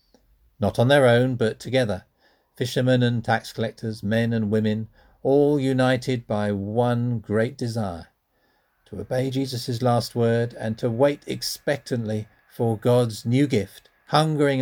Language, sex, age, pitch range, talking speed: English, male, 50-69, 100-125 Hz, 135 wpm